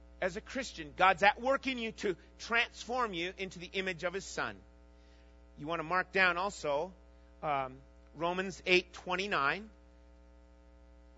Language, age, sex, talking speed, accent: English, 40-59, male, 145 wpm, American